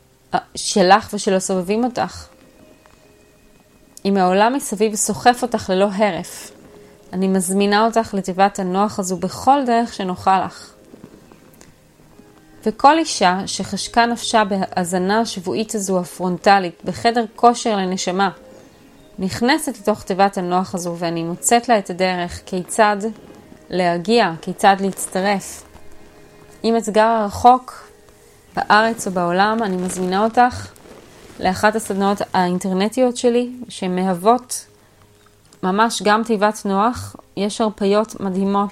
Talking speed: 105 wpm